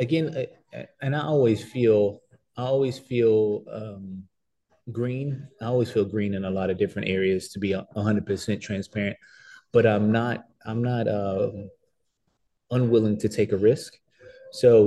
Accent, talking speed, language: American, 150 wpm, English